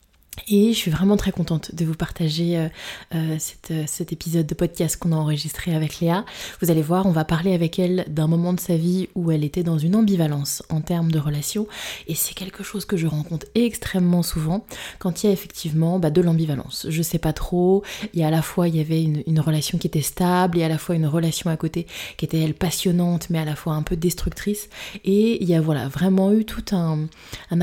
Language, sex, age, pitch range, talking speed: French, female, 20-39, 160-185 Hz, 240 wpm